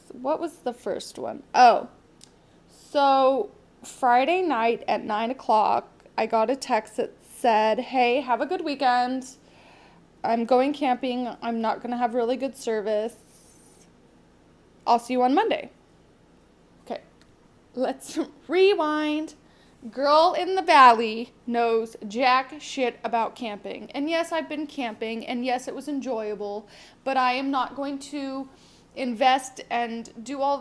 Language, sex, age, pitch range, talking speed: English, female, 20-39, 235-285 Hz, 140 wpm